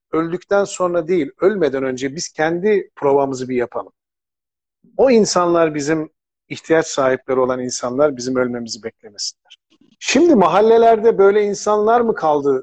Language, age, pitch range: Turkish, 50-69, 140-190 Hz